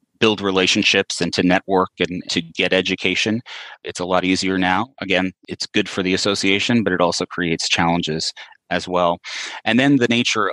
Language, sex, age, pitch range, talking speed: English, male, 30-49, 85-95 Hz, 175 wpm